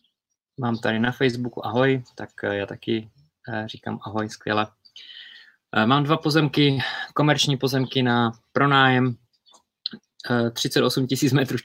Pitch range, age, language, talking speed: 105-125 Hz, 20-39, Czech, 100 wpm